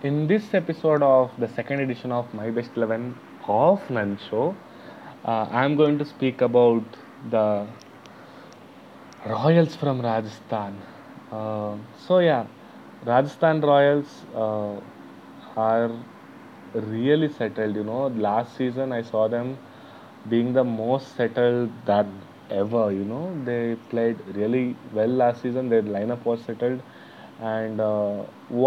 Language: English